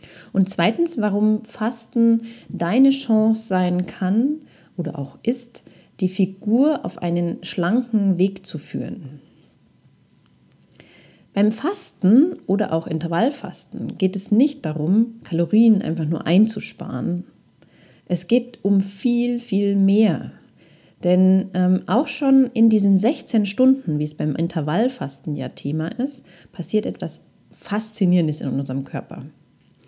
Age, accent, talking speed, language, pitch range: 30-49, German, 120 wpm, German, 165-225 Hz